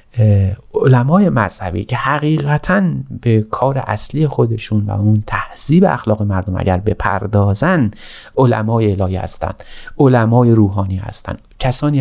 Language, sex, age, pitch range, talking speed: Persian, male, 30-49, 105-130 Hz, 110 wpm